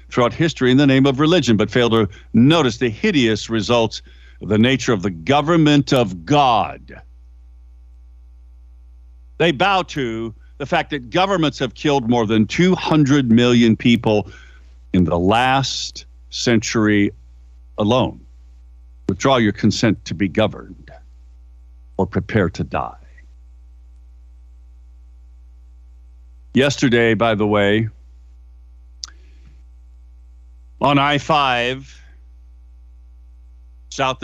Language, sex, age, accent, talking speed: English, male, 60-79, American, 100 wpm